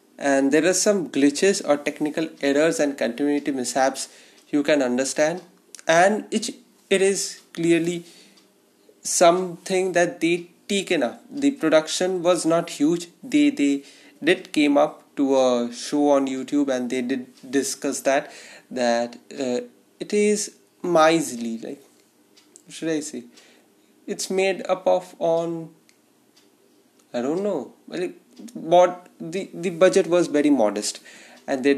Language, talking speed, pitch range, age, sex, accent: English, 135 wpm, 140-185 Hz, 20-39, male, Indian